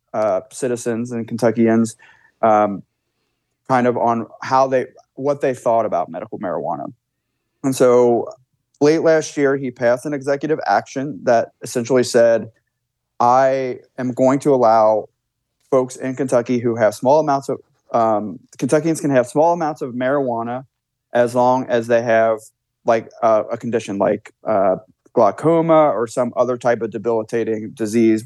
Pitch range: 115-135 Hz